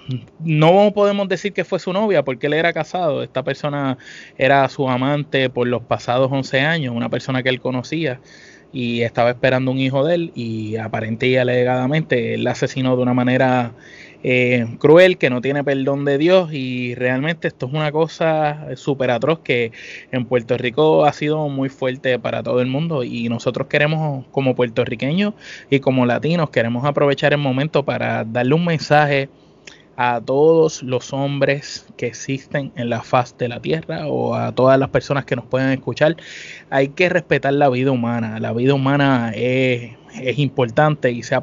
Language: Spanish